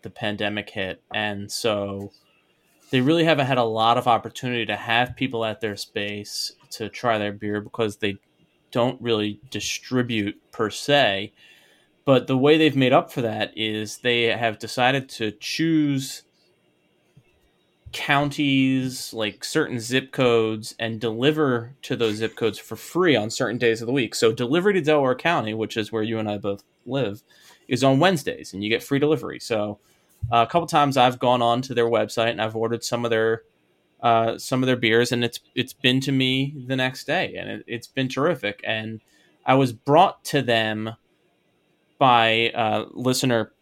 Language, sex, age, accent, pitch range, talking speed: English, male, 30-49, American, 110-130 Hz, 175 wpm